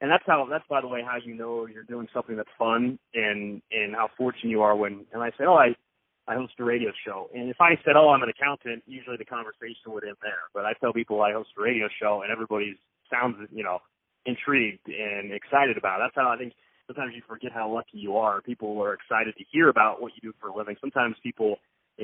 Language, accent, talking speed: English, American, 250 wpm